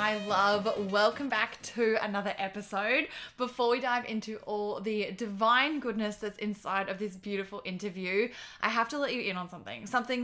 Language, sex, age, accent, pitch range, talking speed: English, female, 10-29, Australian, 205-245 Hz, 175 wpm